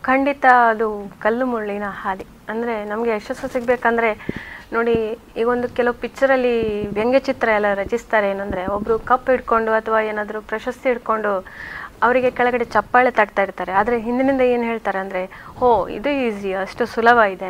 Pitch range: 215-260 Hz